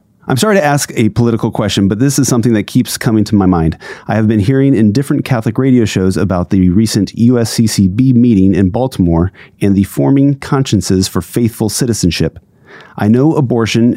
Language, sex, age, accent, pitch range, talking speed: English, male, 30-49, American, 95-125 Hz, 185 wpm